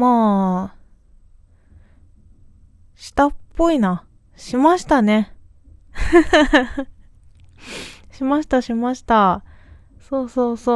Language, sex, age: Japanese, female, 20-39